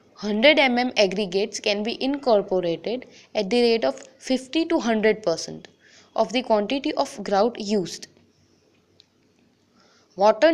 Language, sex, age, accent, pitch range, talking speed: English, female, 20-39, Indian, 210-265 Hz, 115 wpm